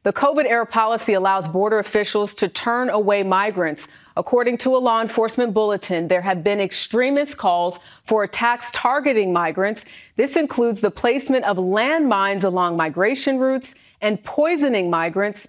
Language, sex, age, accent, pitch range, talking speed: English, female, 40-59, American, 190-245 Hz, 145 wpm